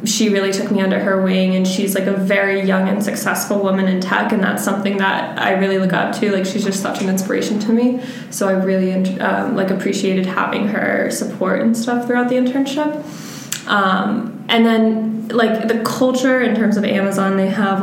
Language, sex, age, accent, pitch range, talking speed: English, female, 20-39, American, 190-230 Hz, 205 wpm